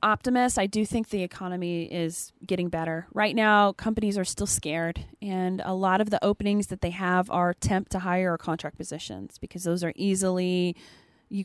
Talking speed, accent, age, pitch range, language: 190 wpm, American, 20-39, 170-205 Hz, English